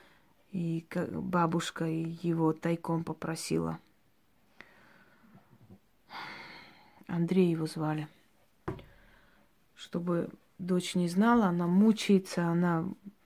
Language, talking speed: Russian, 70 wpm